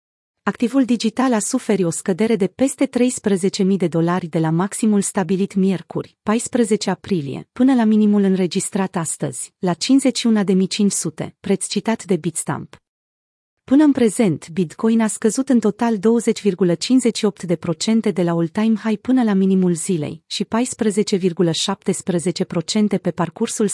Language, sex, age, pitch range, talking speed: Romanian, female, 30-49, 175-225 Hz, 125 wpm